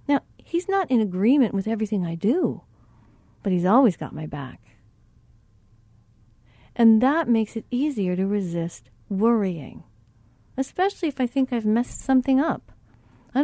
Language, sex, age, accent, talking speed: English, female, 40-59, American, 140 wpm